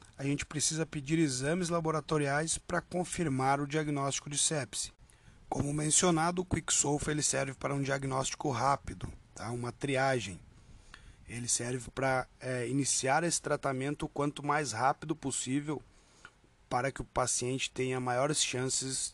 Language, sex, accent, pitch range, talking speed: Portuguese, male, Brazilian, 125-155 Hz, 140 wpm